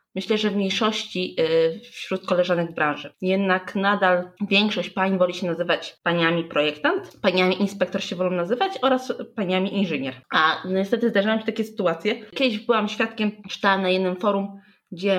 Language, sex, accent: Polish, female, native